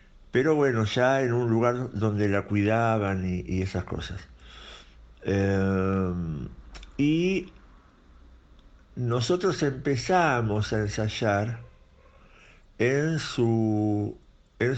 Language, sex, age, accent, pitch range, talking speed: Spanish, male, 60-79, Argentinian, 90-110 Hz, 90 wpm